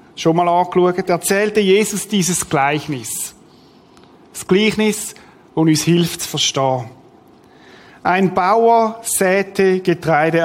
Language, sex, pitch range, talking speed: German, male, 170-210 Hz, 105 wpm